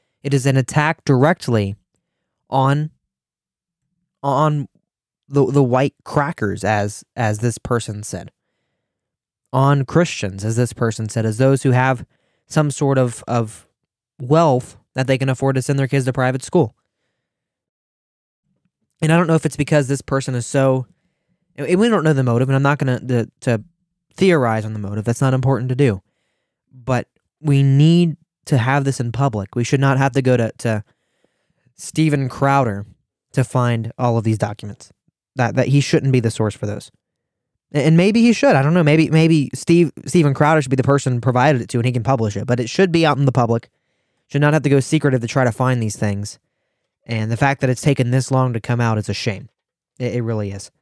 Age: 20-39